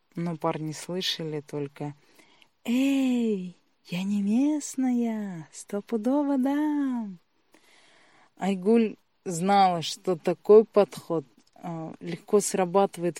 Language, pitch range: Russian, 170-225 Hz